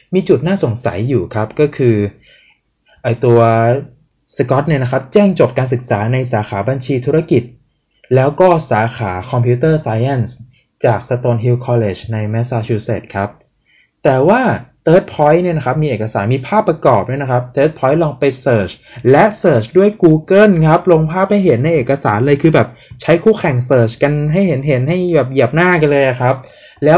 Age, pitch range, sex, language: 20-39, 120-175 Hz, male, Thai